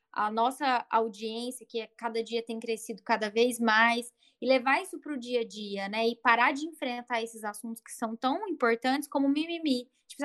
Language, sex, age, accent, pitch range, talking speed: Portuguese, female, 10-29, Brazilian, 230-280 Hz, 200 wpm